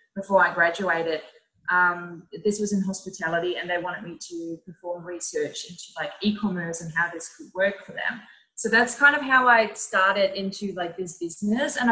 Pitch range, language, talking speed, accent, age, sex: 180-215 Hz, English, 185 wpm, Australian, 20-39, female